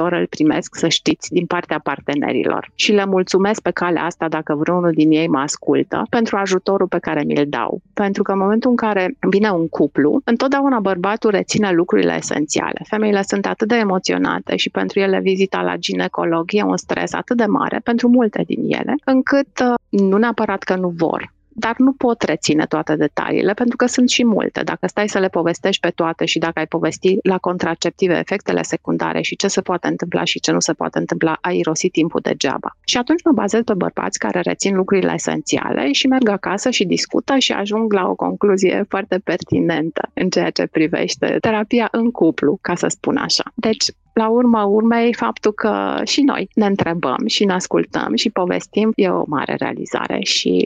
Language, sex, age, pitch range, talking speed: Romanian, female, 30-49, 175-235 Hz, 190 wpm